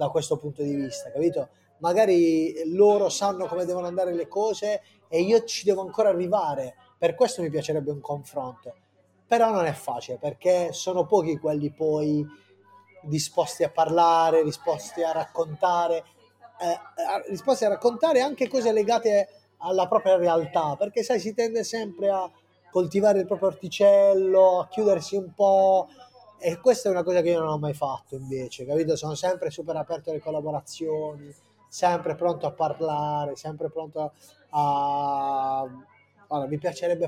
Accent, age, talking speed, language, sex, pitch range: native, 20-39, 155 wpm, Italian, male, 150-185 Hz